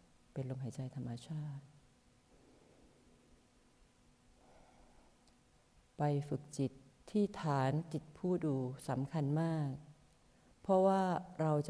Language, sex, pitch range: Thai, female, 135-165 Hz